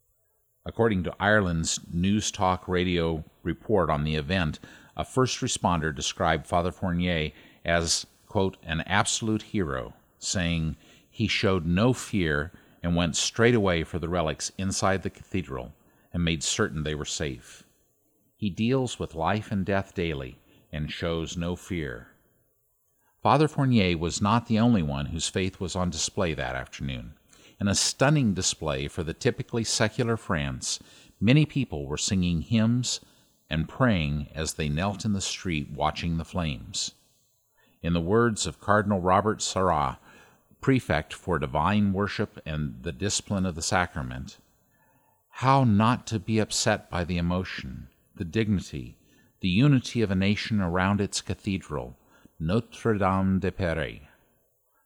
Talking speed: 140 wpm